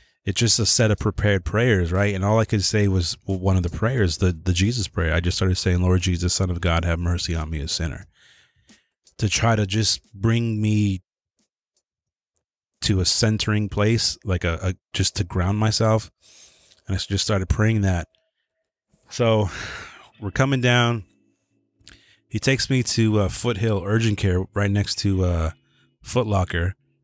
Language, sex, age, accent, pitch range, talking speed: English, male, 30-49, American, 90-110 Hz, 175 wpm